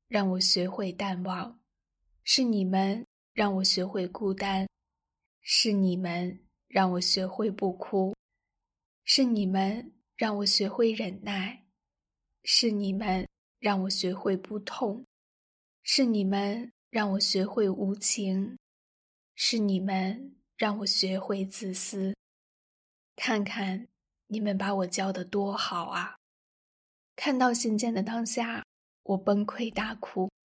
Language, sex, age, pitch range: Chinese, female, 20-39, 195-225 Hz